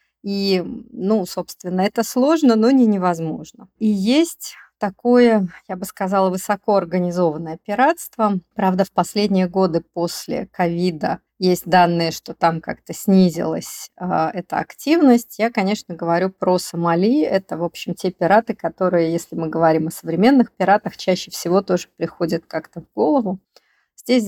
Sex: female